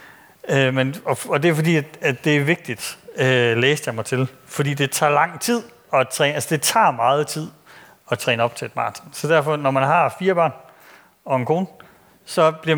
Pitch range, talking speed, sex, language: 125-160 Hz, 200 wpm, male, Danish